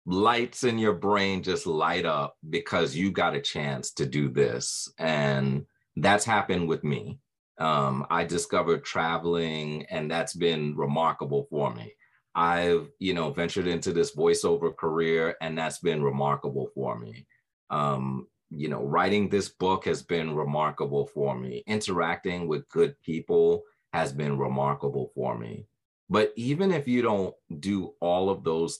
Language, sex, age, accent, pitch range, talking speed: English, male, 30-49, American, 70-100 Hz, 150 wpm